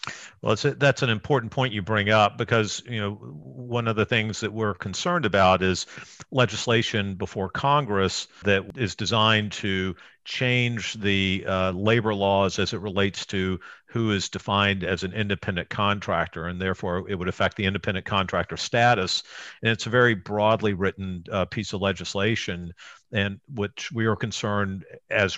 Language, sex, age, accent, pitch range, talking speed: English, male, 50-69, American, 95-110 Hz, 165 wpm